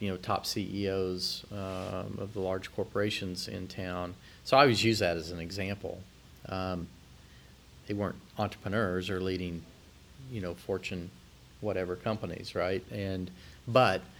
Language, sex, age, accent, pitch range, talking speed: English, male, 40-59, American, 95-110 Hz, 140 wpm